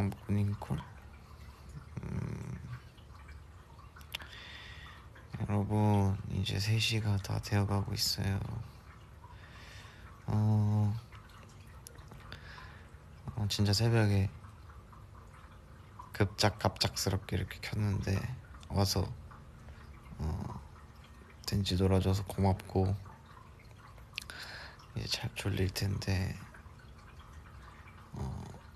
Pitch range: 90-115 Hz